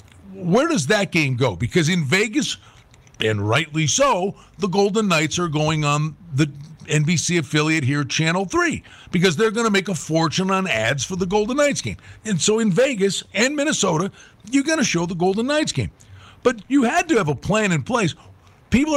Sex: male